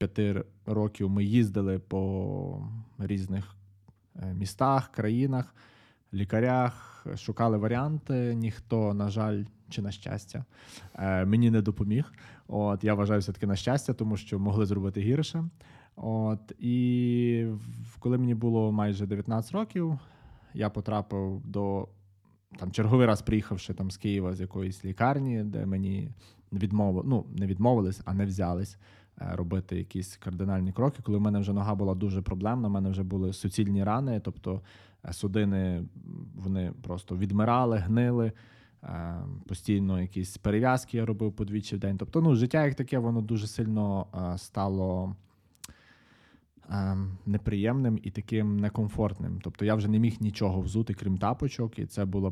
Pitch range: 95-115 Hz